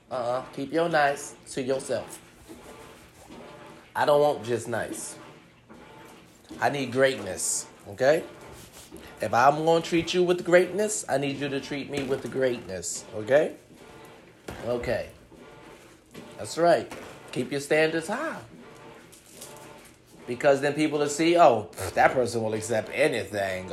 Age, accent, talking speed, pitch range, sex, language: 30-49, American, 130 wpm, 115-170 Hz, male, English